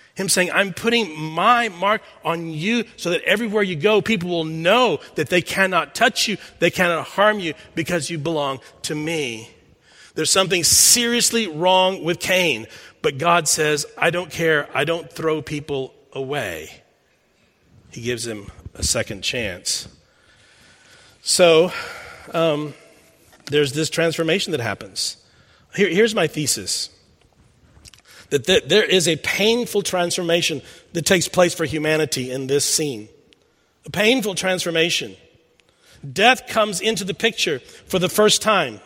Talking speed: 140 wpm